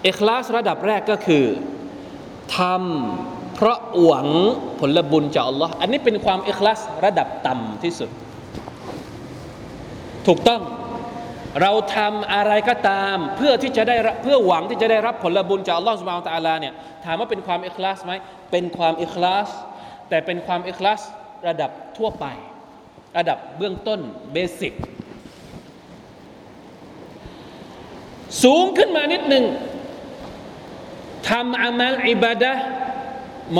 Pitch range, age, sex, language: 170-235 Hz, 20-39, male, Thai